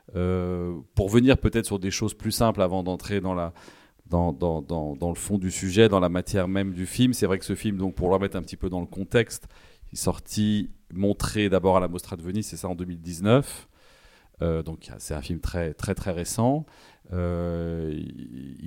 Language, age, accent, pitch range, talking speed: French, 40-59, French, 90-105 Hz, 210 wpm